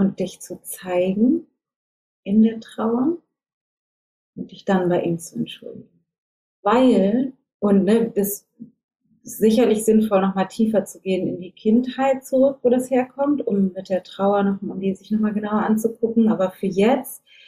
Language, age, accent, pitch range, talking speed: German, 30-49, German, 180-220 Hz, 170 wpm